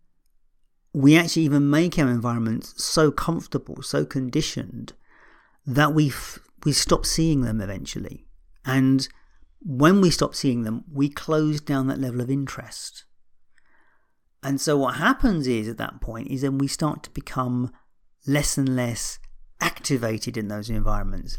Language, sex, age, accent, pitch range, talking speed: English, male, 50-69, British, 120-160 Hz, 145 wpm